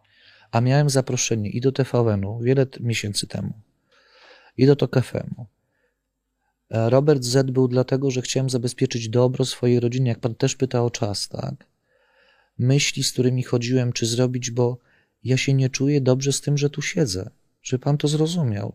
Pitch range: 120-140 Hz